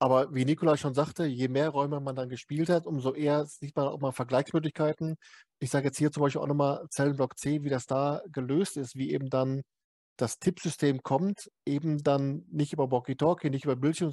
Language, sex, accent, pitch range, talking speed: German, male, German, 135-155 Hz, 205 wpm